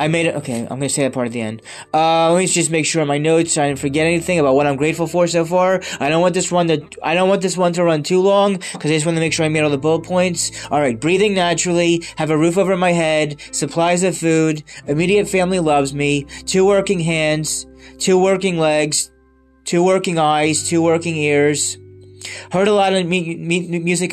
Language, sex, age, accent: English, male, 20-39, American